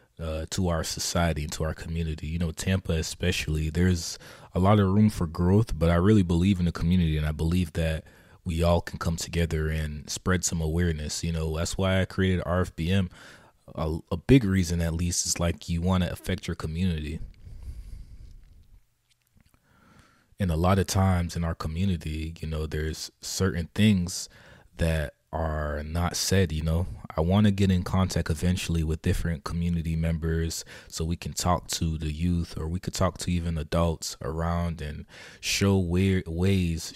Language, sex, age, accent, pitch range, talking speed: English, male, 20-39, American, 80-95 Hz, 175 wpm